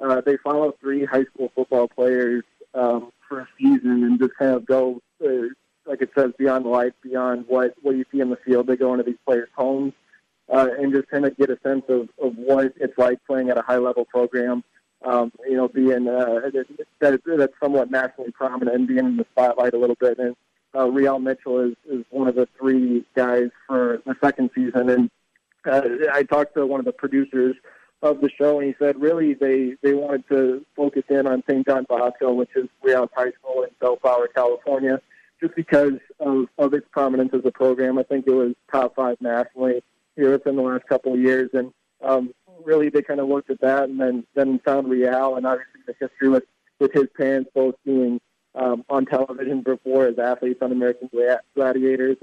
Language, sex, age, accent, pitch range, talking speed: English, male, 20-39, American, 125-135 Hz, 205 wpm